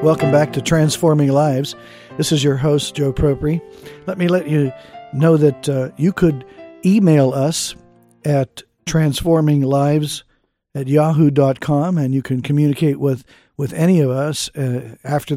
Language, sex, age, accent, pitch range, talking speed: English, male, 50-69, American, 135-160 Hz, 140 wpm